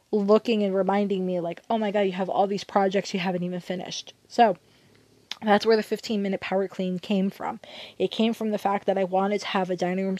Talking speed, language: 235 wpm, English